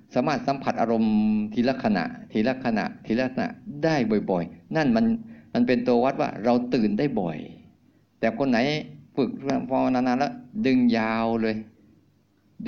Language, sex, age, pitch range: Thai, male, 50-69, 110-145 Hz